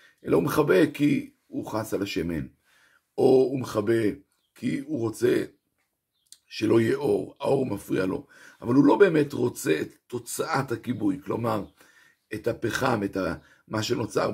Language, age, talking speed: Hebrew, 50-69, 140 wpm